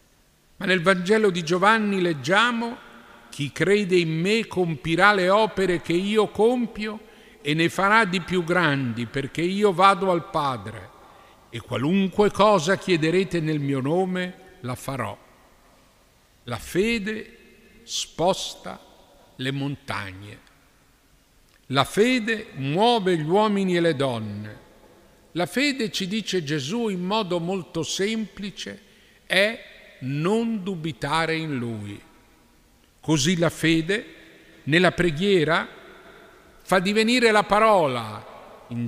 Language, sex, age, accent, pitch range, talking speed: Italian, male, 50-69, native, 135-200 Hz, 115 wpm